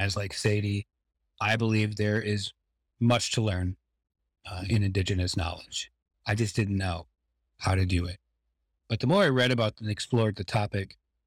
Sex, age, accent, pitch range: male, 40-59, American, 85-120 Hz